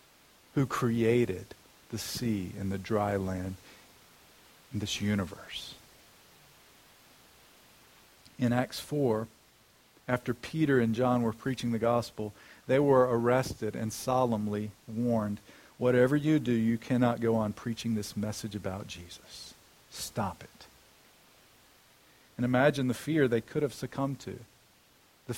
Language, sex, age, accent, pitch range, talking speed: English, male, 50-69, American, 110-135 Hz, 125 wpm